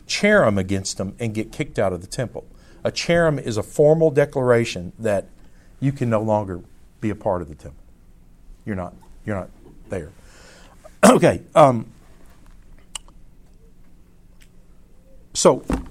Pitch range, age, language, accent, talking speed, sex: 100-150 Hz, 50-69, English, American, 130 wpm, male